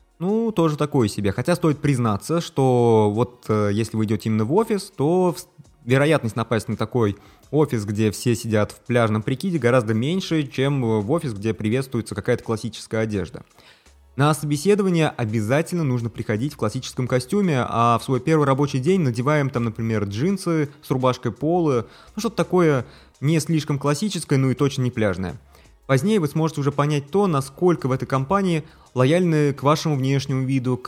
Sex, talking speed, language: male, 165 wpm, Russian